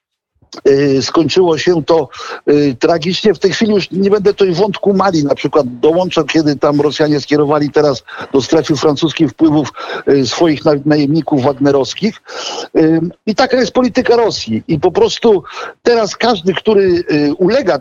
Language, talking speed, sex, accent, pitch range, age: Polish, 140 wpm, male, native, 150-200 Hz, 50-69